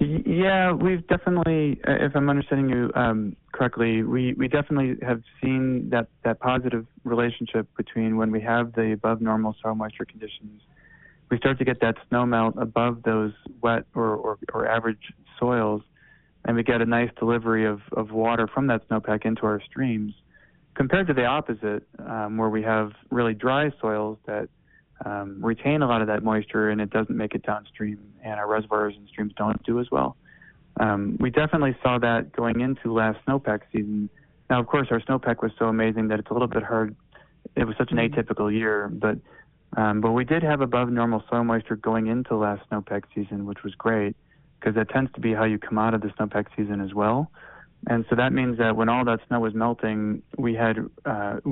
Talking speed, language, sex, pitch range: 195 wpm, English, male, 110-125 Hz